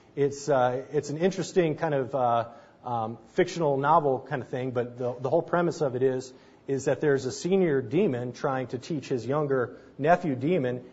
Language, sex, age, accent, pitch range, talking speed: English, male, 30-49, American, 130-155 Hz, 190 wpm